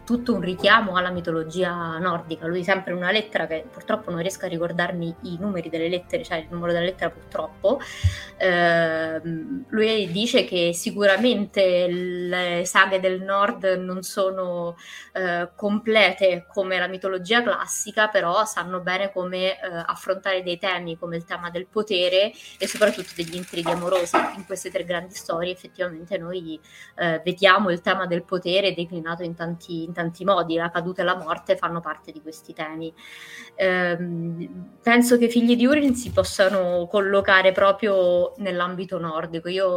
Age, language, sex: 20-39, Italian, female